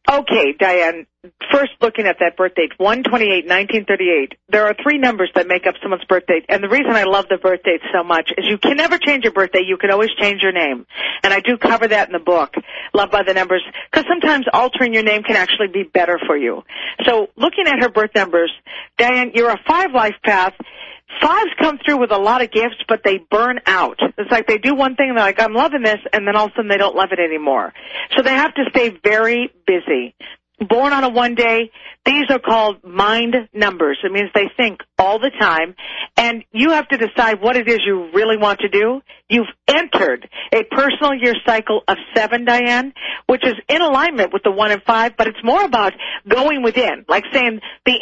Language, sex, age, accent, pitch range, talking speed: English, female, 40-59, American, 195-255 Hz, 220 wpm